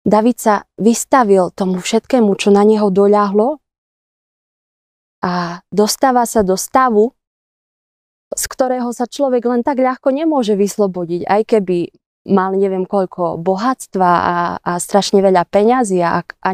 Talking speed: 130 wpm